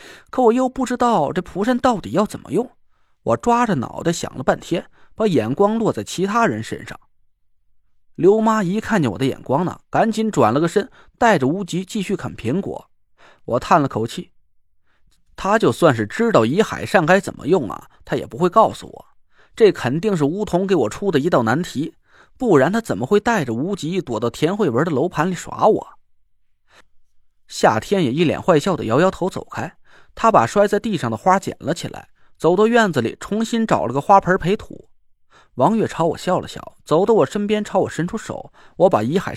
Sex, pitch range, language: male, 150-225 Hz, Chinese